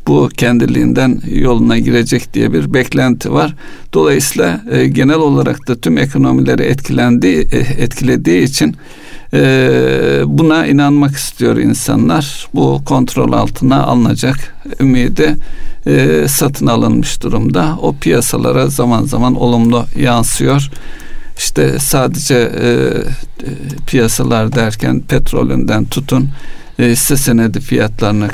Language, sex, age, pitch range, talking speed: Turkish, male, 60-79, 115-140 Hz, 100 wpm